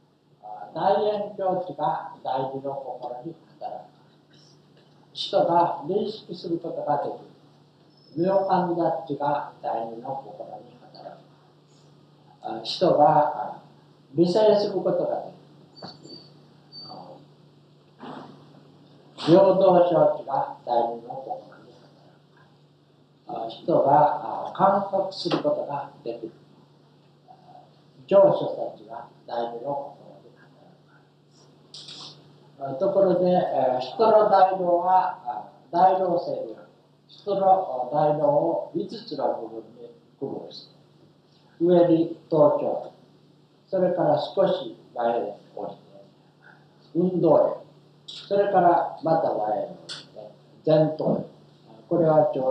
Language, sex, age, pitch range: Japanese, male, 60-79, 140-185 Hz